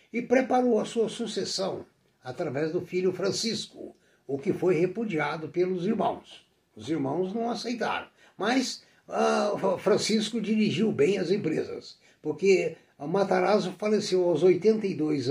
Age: 60-79